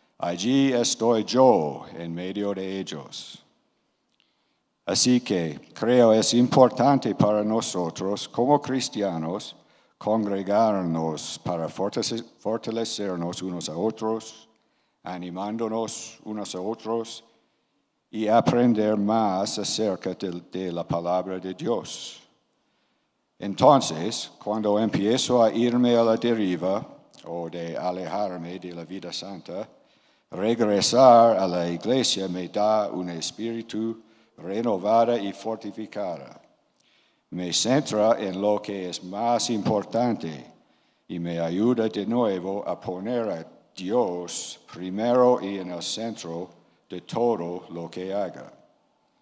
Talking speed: 110 wpm